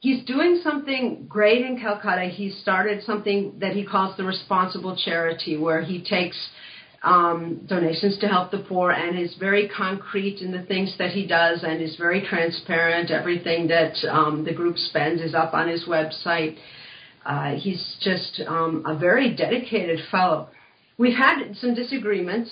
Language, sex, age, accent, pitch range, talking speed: English, female, 50-69, American, 165-210 Hz, 165 wpm